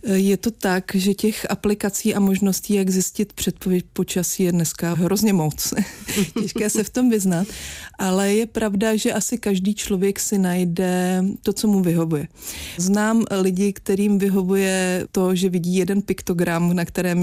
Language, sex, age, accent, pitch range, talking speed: Czech, female, 30-49, native, 180-205 Hz, 155 wpm